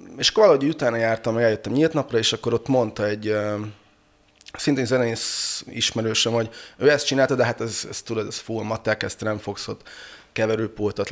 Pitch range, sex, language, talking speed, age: 105-130 Hz, male, Hungarian, 185 wpm, 20-39